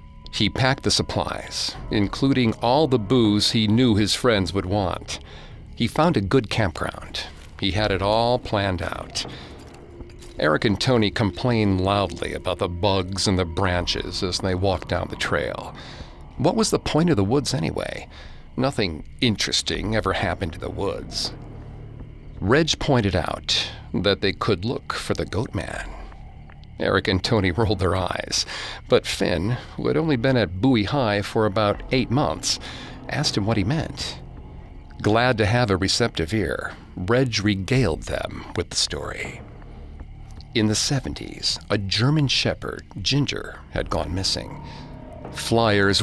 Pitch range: 95-125 Hz